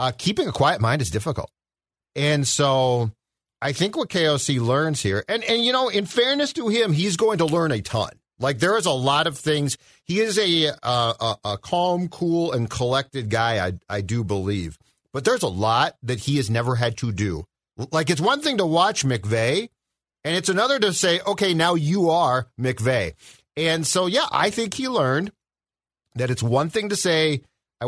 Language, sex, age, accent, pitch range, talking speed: English, male, 40-59, American, 120-170 Hz, 200 wpm